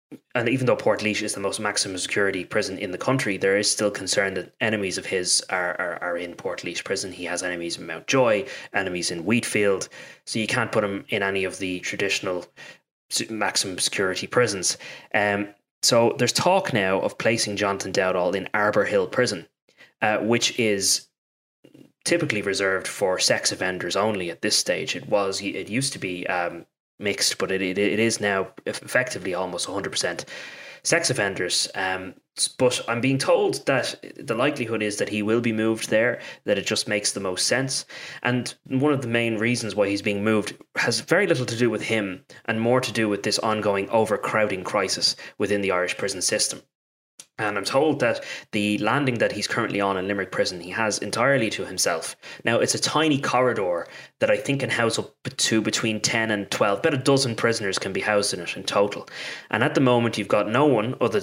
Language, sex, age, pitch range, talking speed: English, male, 20-39, 100-120 Hz, 200 wpm